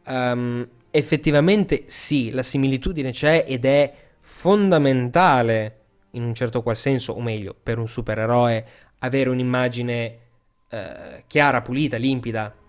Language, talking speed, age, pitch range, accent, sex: Italian, 120 wpm, 20-39, 115-135 Hz, native, male